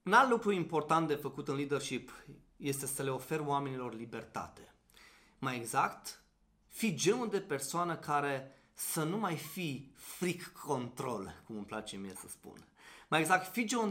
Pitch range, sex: 135-210 Hz, male